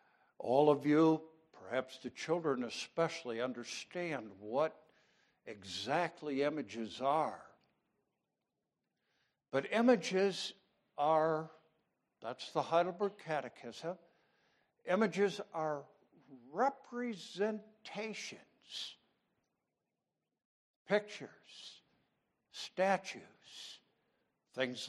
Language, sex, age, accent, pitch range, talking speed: English, male, 60-79, American, 145-205 Hz, 60 wpm